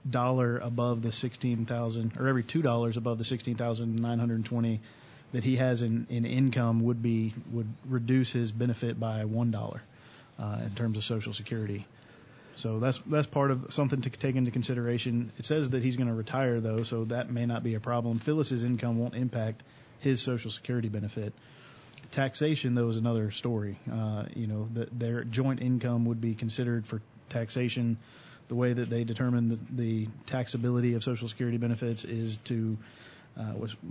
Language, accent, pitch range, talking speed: English, American, 115-125 Hz, 170 wpm